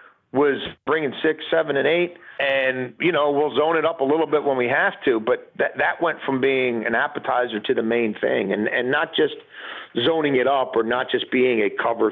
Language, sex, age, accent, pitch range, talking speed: English, male, 50-69, American, 120-185 Hz, 225 wpm